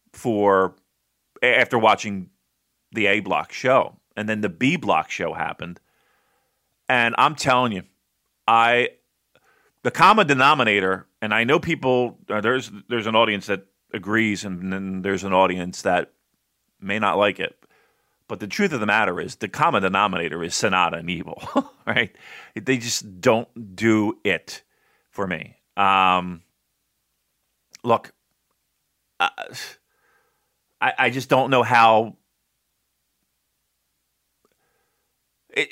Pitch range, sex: 100-140 Hz, male